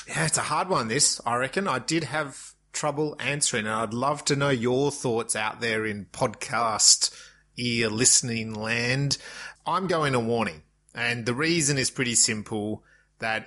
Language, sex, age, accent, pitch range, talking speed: English, male, 30-49, Australian, 110-130 Hz, 170 wpm